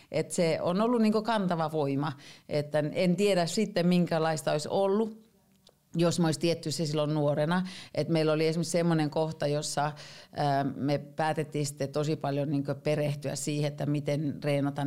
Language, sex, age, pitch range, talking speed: Finnish, female, 40-59, 145-160 Hz, 155 wpm